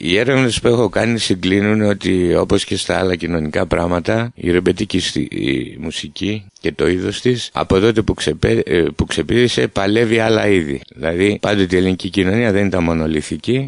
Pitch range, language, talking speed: 90-120 Hz, English, 160 wpm